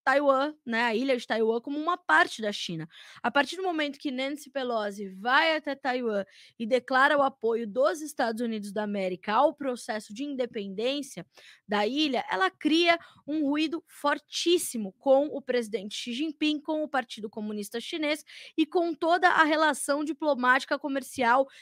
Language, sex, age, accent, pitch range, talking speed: Portuguese, female, 20-39, Brazilian, 240-305 Hz, 160 wpm